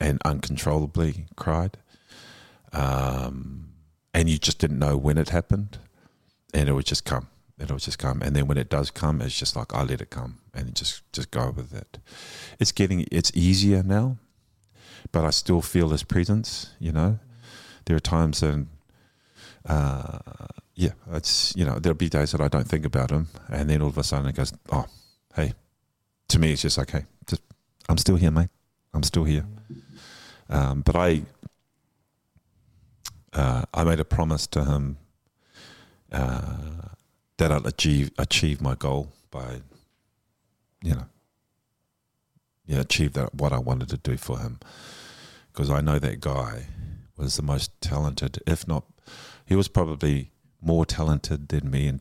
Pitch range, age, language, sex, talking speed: 70-85 Hz, 30-49, English, male, 170 wpm